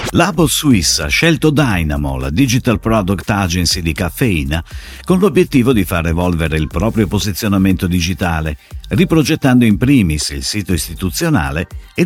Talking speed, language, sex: 135 wpm, Italian, male